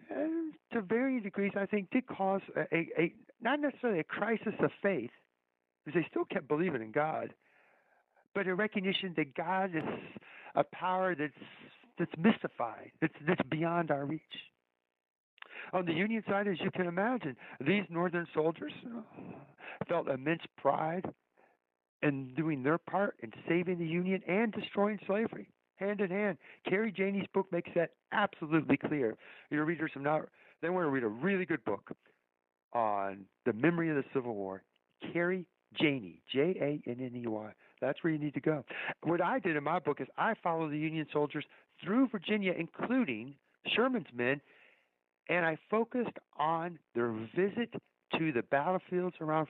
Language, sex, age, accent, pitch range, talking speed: English, male, 60-79, American, 140-195 Hz, 155 wpm